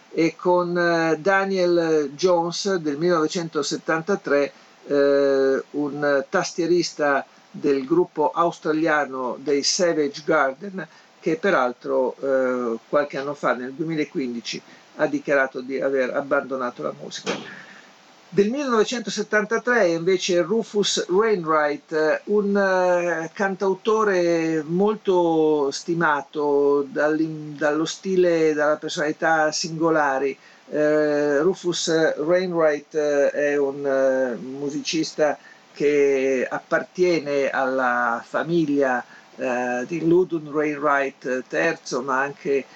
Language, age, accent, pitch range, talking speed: Italian, 50-69, native, 140-175 Hz, 80 wpm